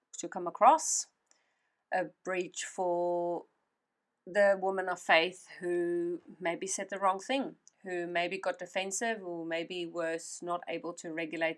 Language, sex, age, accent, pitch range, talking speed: English, female, 30-49, Australian, 170-195 Hz, 140 wpm